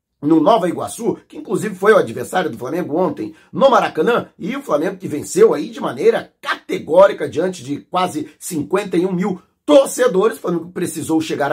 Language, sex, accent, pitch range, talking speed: Portuguese, male, Brazilian, 165-200 Hz, 165 wpm